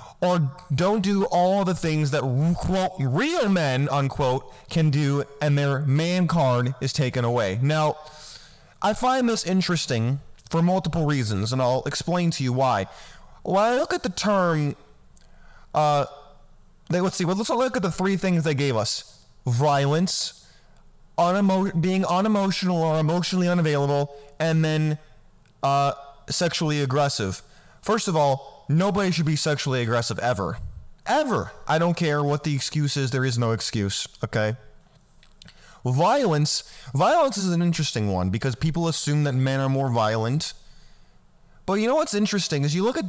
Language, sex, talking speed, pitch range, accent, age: English, male, 150 wpm, 135-175 Hz, American, 20-39